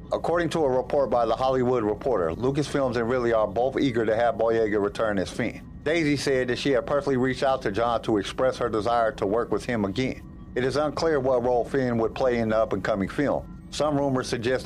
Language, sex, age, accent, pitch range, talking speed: English, male, 50-69, American, 115-135 Hz, 220 wpm